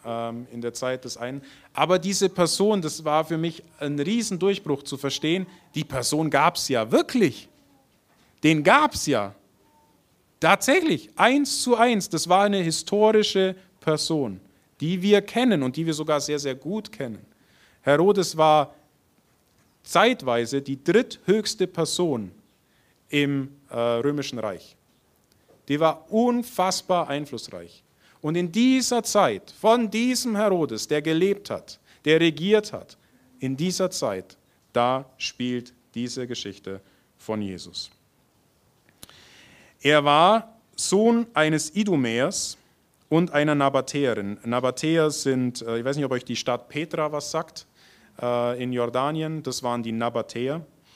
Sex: male